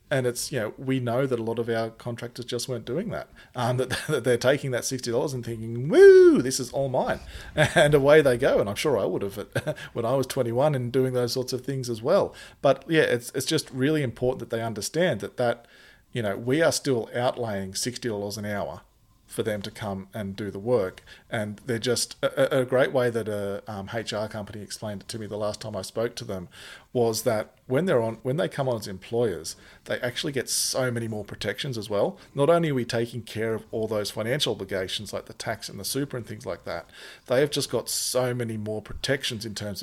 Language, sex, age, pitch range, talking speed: English, male, 40-59, 105-130 Hz, 235 wpm